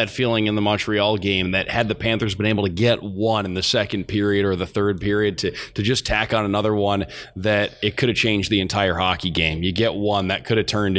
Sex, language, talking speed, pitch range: male, English, 250 wpm, 95-105 Hz